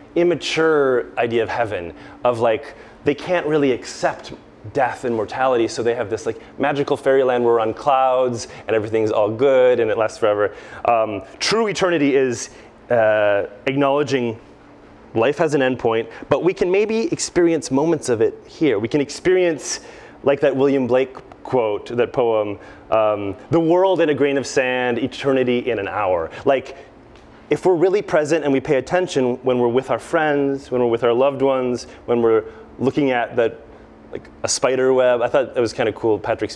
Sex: male